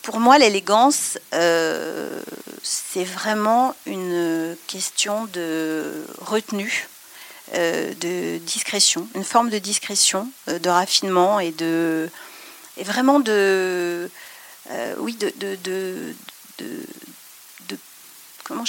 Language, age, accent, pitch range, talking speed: French, 40-59, French, 175-215 Hz, 105 wpm